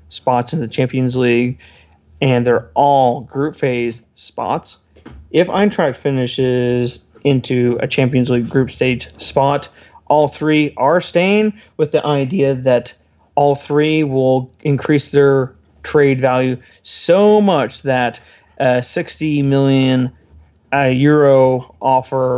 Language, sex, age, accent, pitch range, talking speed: English, male, 30-49, American, 125-145 Hz, 120 wpm